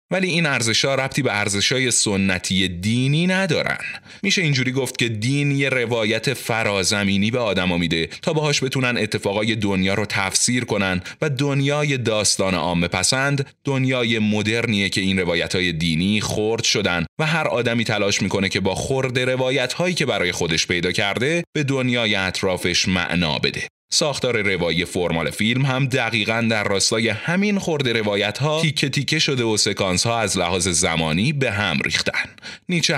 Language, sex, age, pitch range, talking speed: Persian, male, 30-49, 95-130 Hz, 155 wpm